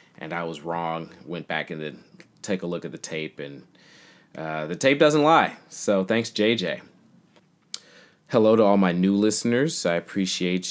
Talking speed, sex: 175 wpm, male